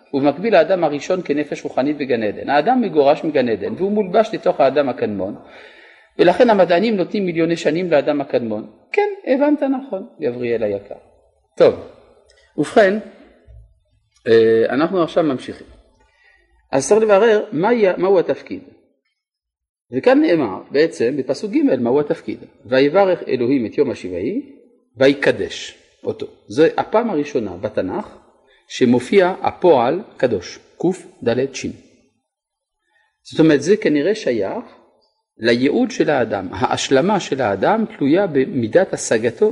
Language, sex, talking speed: Hebrew, male, 115 wpm